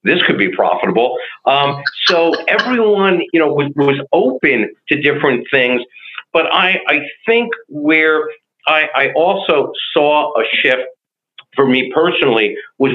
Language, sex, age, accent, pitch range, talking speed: English, male, 50-69, American, 140-220 Hz, 140 wpm